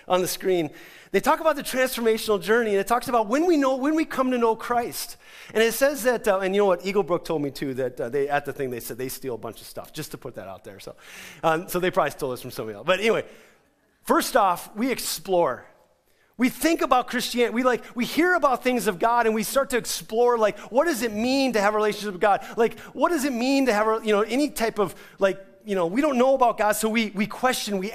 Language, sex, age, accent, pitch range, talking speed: English, male, 30-49, American, 180-235 Hz, 265 wpm